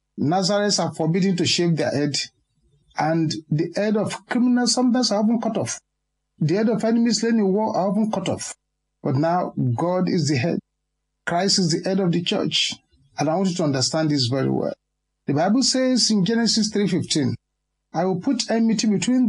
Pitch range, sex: 160-220 Hz, male